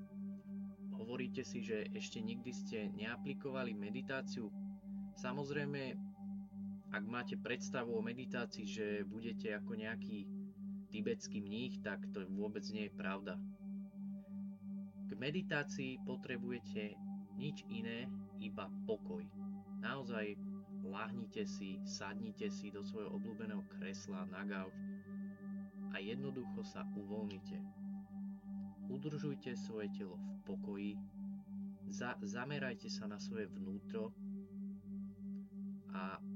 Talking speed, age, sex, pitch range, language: 100 wpm, 20-39, male, 195-205 Hz, Slovak